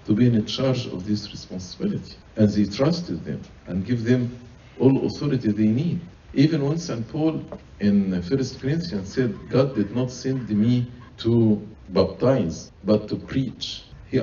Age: 50-69